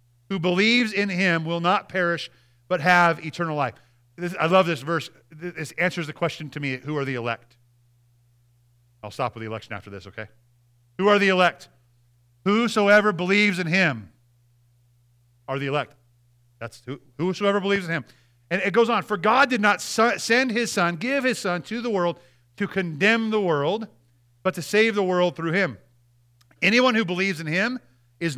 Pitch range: 120-200 Hz